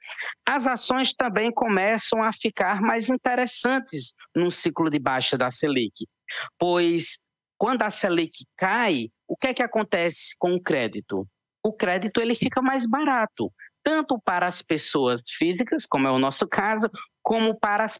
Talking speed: 145 wpm